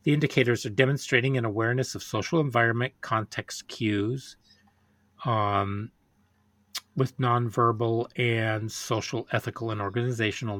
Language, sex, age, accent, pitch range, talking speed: English, male, 40-59, American, 105-125 Hz, 110 wpm